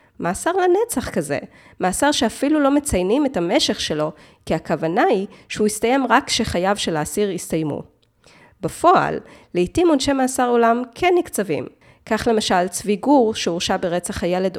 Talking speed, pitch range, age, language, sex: 140 wpm, 175-240 Hz, 20-39, Hebrew, female